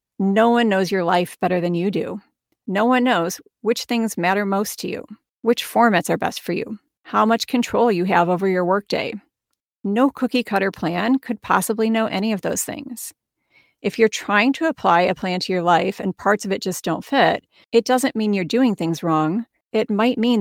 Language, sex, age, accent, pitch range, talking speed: English, female, 40-59, American, 185-230 Hz, 205 wpm